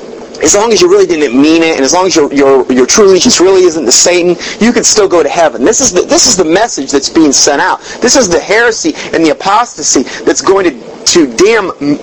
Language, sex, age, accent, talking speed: English, male, 30-49, American, 250 wpm